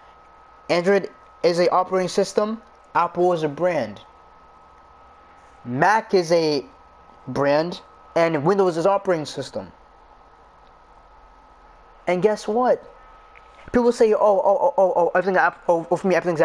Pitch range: 165-205 Hz